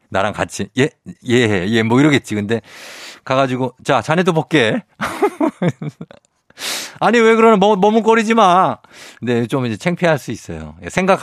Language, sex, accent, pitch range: Korean, male, native, 105-160 Hz